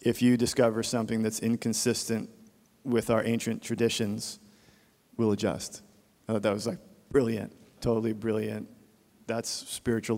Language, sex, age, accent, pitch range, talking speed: English, male, 40-59, American, 110-125 Hz, 130 wpm